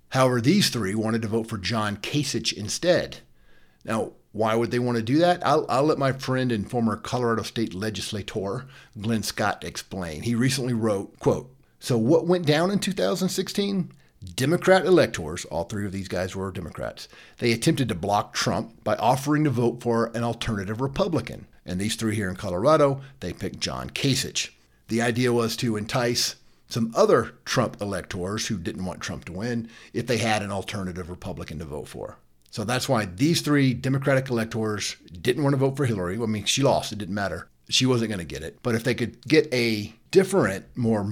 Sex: male